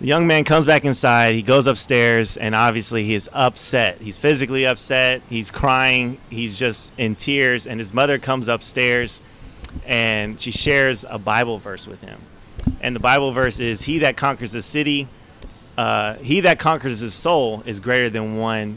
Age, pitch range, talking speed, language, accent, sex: 30-49, 115-140 Hz, 180 wpm, English, American, male